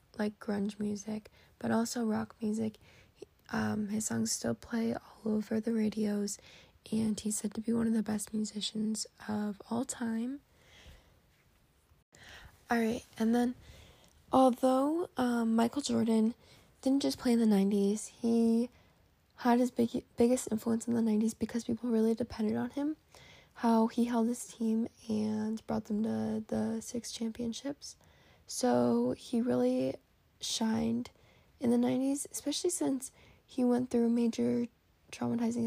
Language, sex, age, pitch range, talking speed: English, female, 10-29, 215-240 Hz, 140 wpm